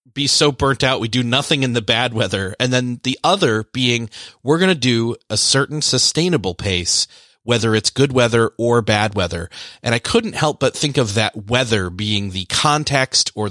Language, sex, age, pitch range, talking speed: English, male, 30-49, 105-135 Hz, 195 wpm